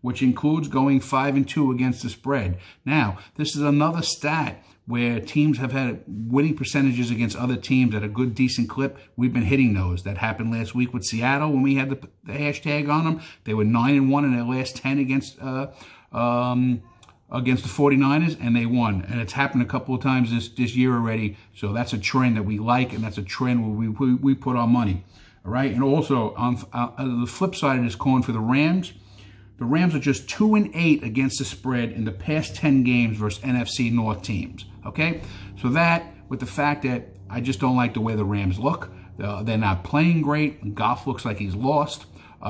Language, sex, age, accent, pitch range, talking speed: English, male, 50-69, American, 110-135 Hz, 215 wpm